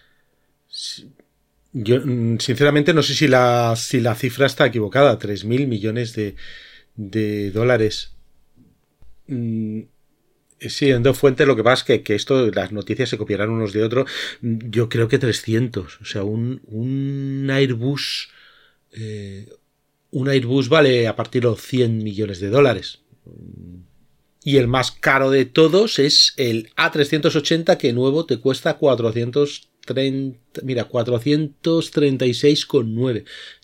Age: 40-59